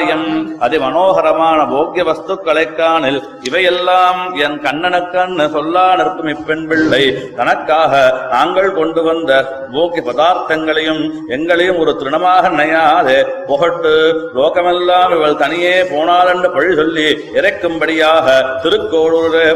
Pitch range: 155-175 Hz